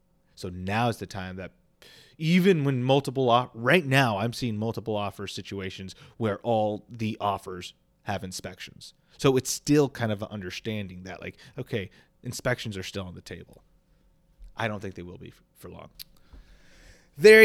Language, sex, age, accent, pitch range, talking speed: English, male, 30-49, American, 100-145 Hz, 165 wpm